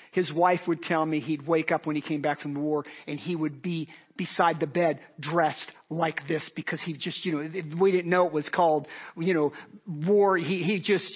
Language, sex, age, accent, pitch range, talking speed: English, male, 40-59, American, 155-180 Hz, 225 wpm